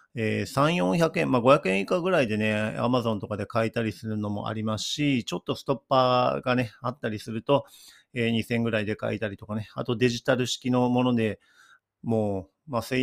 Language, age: Japanese, 40-59